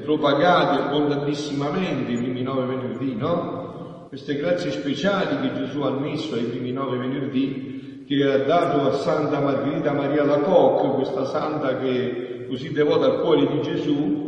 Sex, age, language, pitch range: male, 50-69, Italian, 145-180 Hz